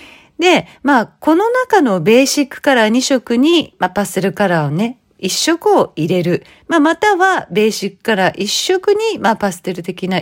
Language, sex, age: Japanese, female, 40-59